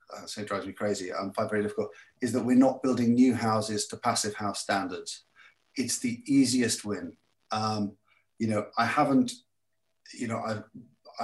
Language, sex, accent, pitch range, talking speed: English, male, British, 110-130 Hz, 180 wpm